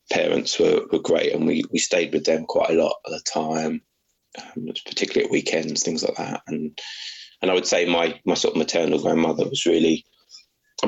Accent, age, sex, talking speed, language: British, 20-39, male, 205 wpm, English